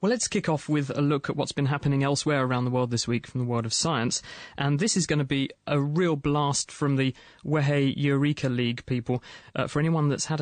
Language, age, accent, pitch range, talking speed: English, 30-49, British, 125-150 Hz, 240 wpm